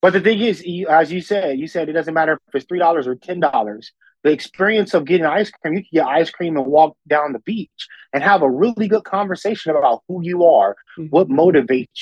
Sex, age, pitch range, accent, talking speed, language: male, 20-39, 145-195 Hz, American, 225 wpm, English